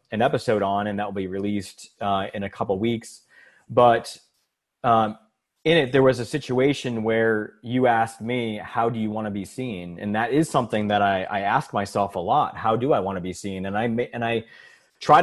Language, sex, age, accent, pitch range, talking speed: English, male, 30-49, American, 105-125 Hz, 220 wpm